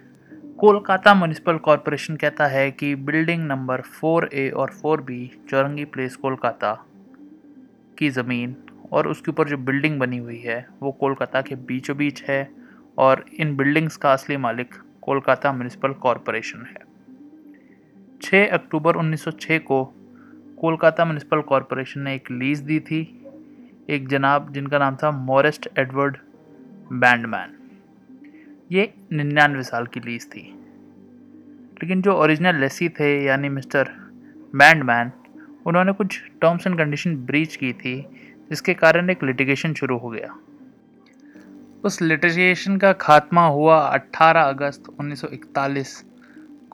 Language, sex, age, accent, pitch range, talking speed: Hindi, male, 20-39, native, 135-200 Hz, 125 wpm